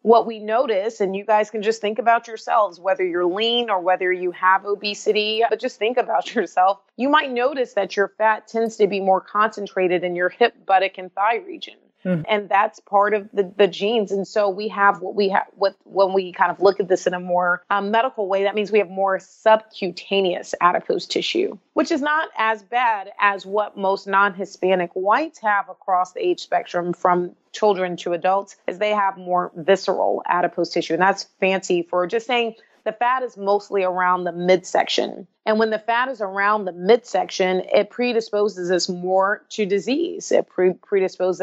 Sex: female